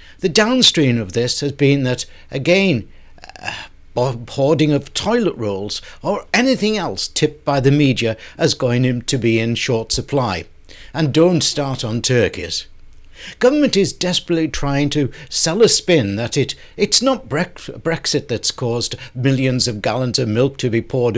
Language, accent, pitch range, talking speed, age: English, British, 115-160 Hz, 155 wpm, 60-79